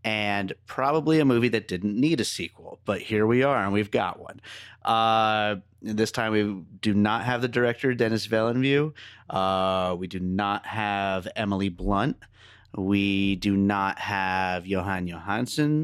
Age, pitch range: 30-49, 100-120 Hz